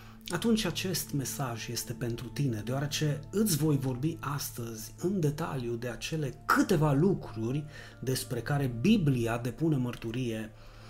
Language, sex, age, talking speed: Romanian, male, 30-49, 120 wpm